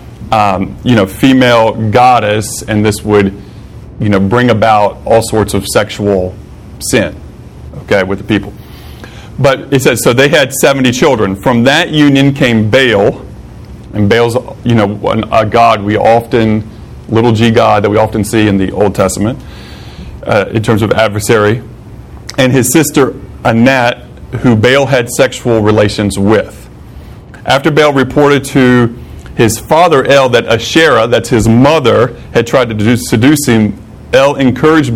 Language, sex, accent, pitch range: English, male, American, 105-125 Hz